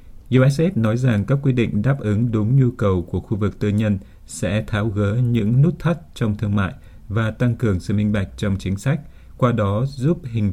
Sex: male